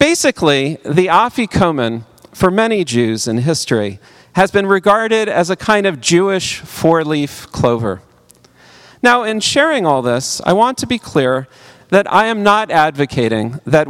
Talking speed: 145 wpm